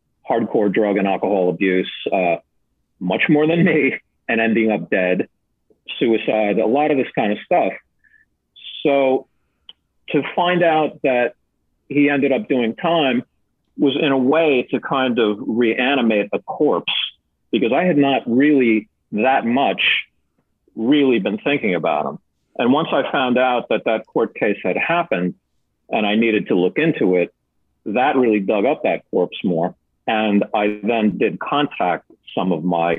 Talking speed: 160 wpm